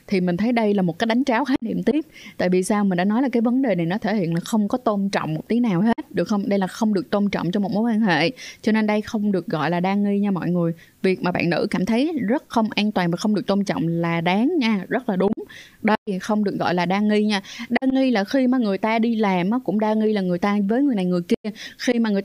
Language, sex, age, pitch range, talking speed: Vietnamese, female, 20-39, 185-230 Hz, 305 wpm